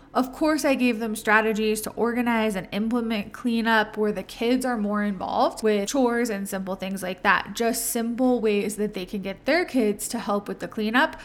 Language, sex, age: English, female, 20-39